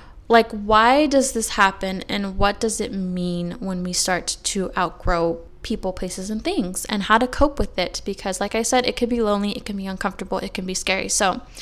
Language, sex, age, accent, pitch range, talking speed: English, female, 20-39, American, 195-235 Hz, 215 wpm